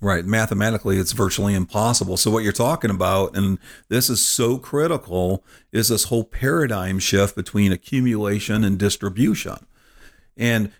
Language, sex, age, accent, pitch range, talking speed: English, male, 50-69, American, 100-125 Hz, 140 wpm